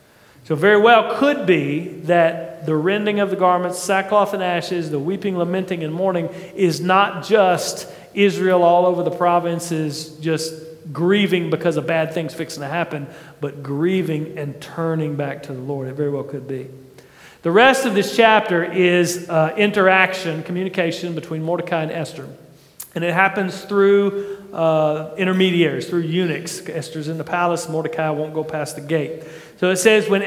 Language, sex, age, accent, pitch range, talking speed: English, male, 40-59, American, 165-205 Hz, 165 wpm